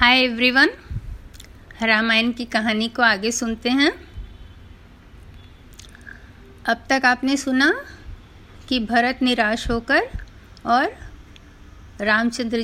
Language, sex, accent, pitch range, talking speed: Hindi, female, native, 205-260 Hz, 95 wpm